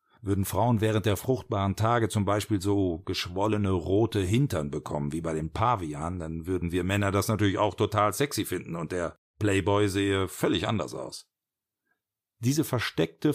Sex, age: male, 50-69